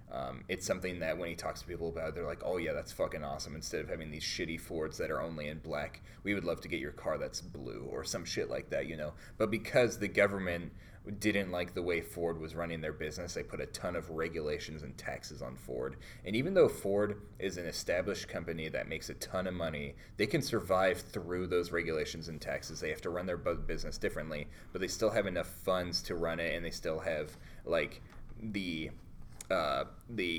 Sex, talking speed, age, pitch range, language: male, 220 wpm, 30-49, 80-100 Hz, English